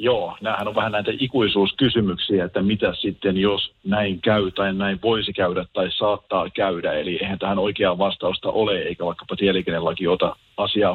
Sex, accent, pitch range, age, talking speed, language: male, native, 95-105 Hz, 40-59, 165 wpm, Finnish